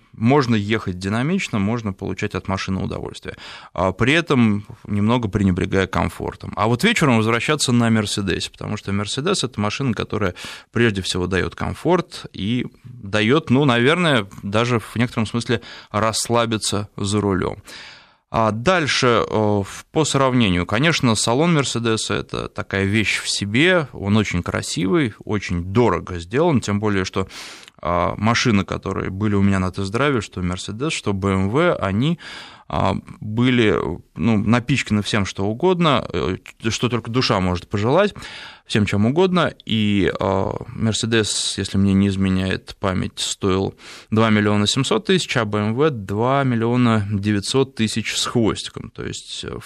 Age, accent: 20-39, native